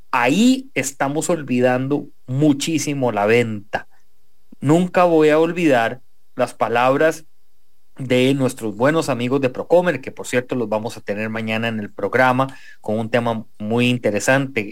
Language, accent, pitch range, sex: English, Mexican, 120-165 Hz, male